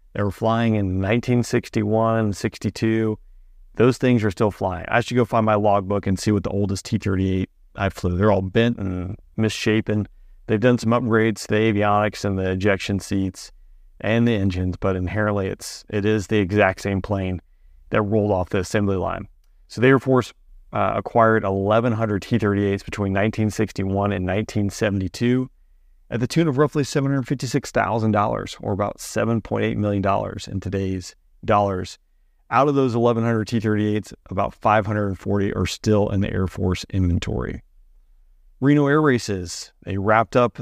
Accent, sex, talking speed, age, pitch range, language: American, male, 170 wpm, 30-49, 95-115 Hz, English